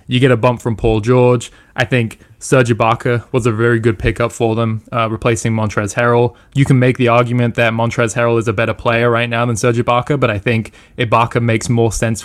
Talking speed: 225 wpm